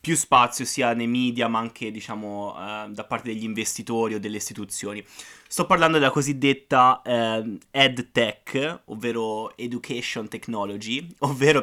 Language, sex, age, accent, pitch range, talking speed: Italian, male, 20-39, native, 110-135 Hz, 130 wpm